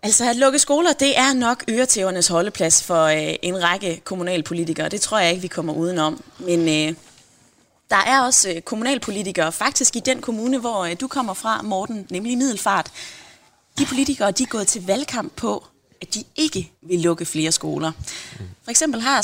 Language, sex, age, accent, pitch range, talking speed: Danish, female, 20-39, native, 170-230 Hz, 185 wpm